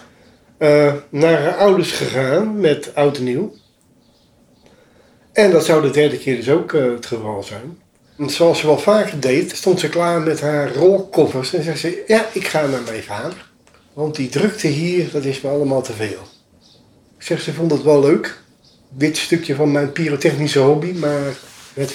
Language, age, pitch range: Dutch, 40-59, 125-160 Hz